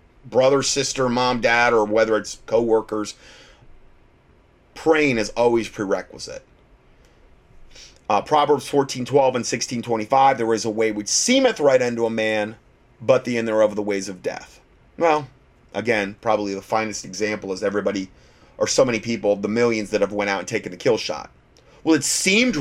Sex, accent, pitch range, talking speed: male, American, 105-135 Hz, 170 wpm